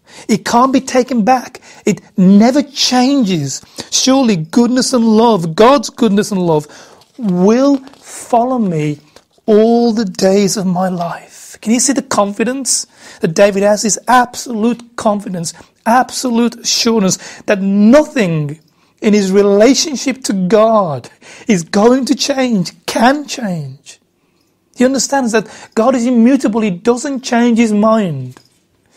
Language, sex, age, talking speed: English, male, 30-49, 130 wpm